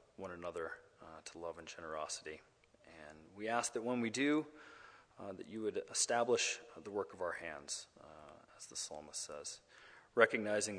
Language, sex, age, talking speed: English, male, 30-49, 165 wpm